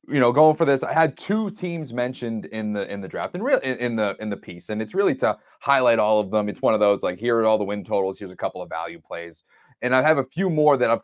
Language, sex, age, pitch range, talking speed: English, male, 30-49, 100-130 Hz, 300 wpm